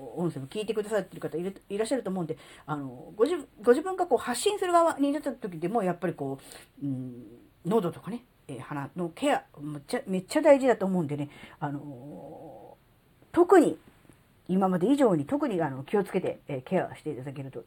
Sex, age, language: female, 40-59, Japanese